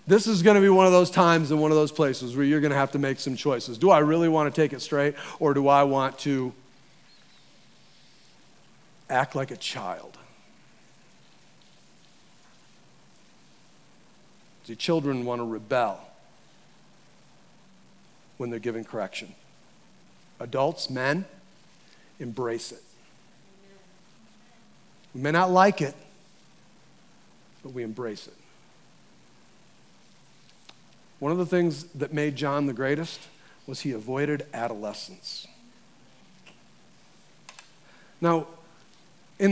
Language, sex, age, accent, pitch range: Japanese, male, 40-59, American, 145-180 Hz